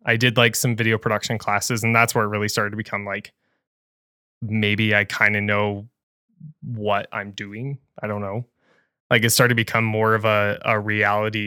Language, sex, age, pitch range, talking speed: English, male, 20-39, 105-120 Hz, 195 wpm